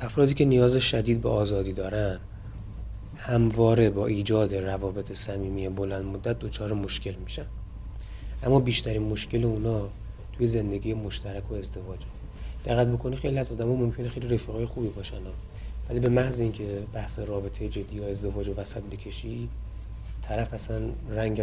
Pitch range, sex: 100-115 Hz, male